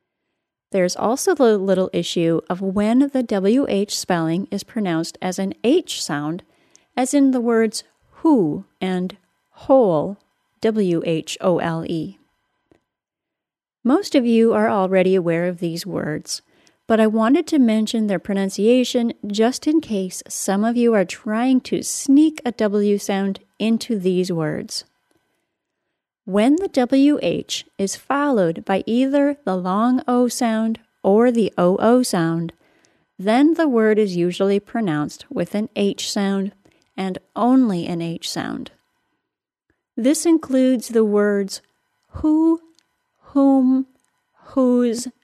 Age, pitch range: 30-49, 190-255 Hz